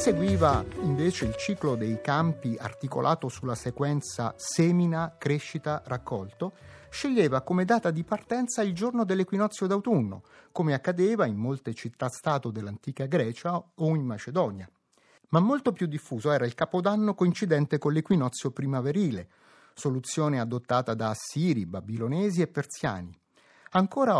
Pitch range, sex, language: 125-185 Hz, male, Italian